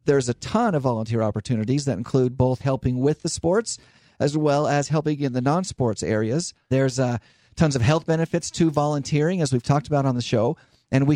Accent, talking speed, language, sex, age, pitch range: American, 205 wpm, English, male, 40-59, 130-165 Hz